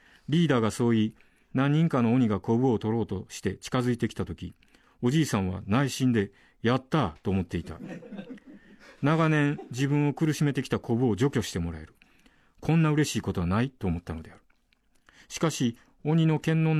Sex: male